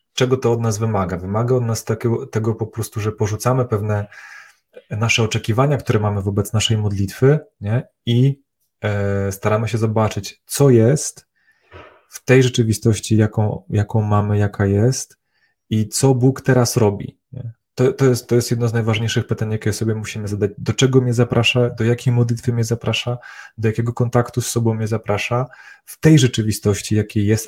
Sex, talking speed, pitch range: male, 170 wpm, 105-120 Hz